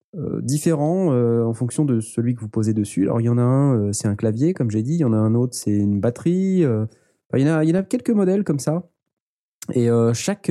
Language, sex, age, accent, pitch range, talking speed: French, male, 20-39, French, 110-155 Hz, 280 wpm